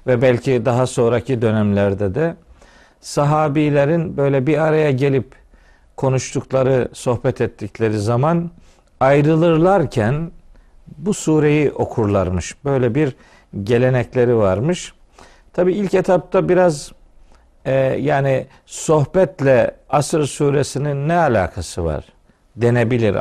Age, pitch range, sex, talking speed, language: 50-69, 120-155 Hz, male, 95 wpm, Turkish